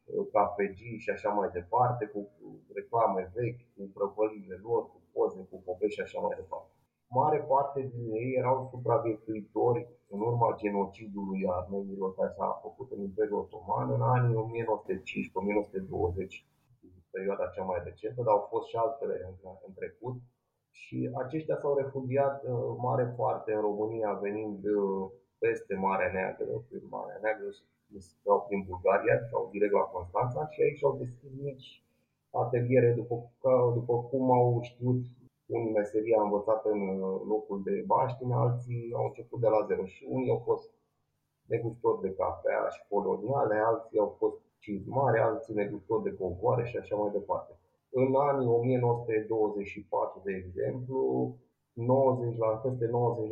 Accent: native